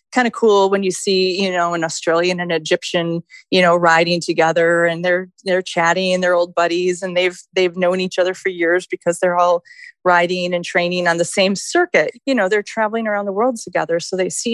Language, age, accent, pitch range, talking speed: English, 30-49, American, 170-200 Hz, 215 wpm